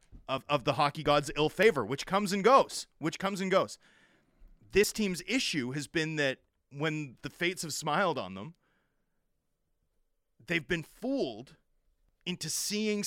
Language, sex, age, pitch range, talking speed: English, male, 30-49, 140-180 Hz, 150 wpm